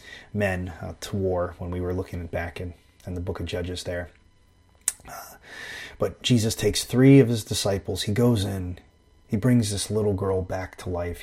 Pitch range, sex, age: 95-135 Hz, male, 30-49